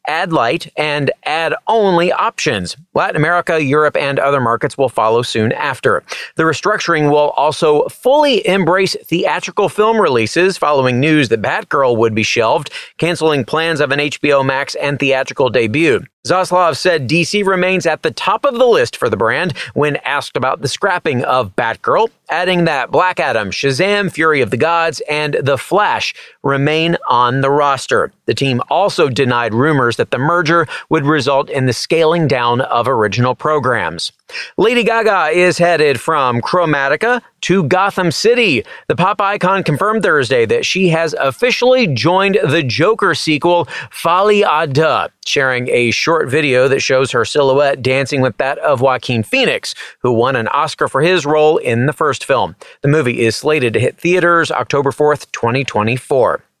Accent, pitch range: American, 135-185 Hz